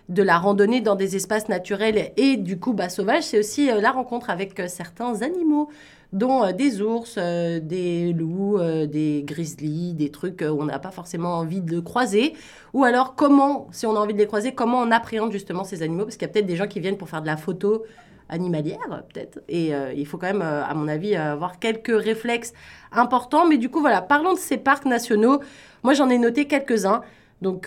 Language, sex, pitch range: French, female, 175-240 Hz